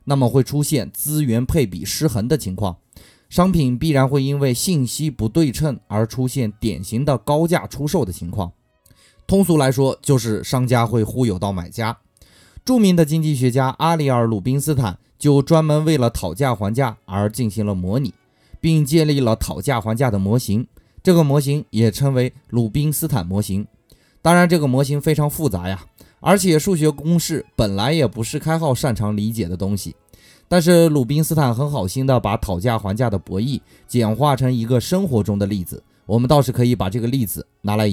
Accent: native